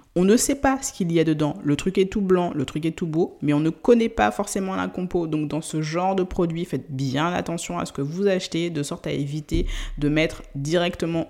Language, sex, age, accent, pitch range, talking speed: French, female, 20-39, French, 155-195 Hz, 255 wpm